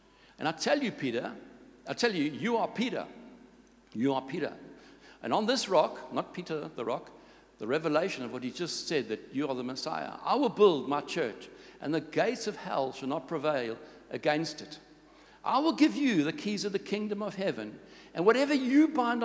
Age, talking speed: 60-79, 200 wpm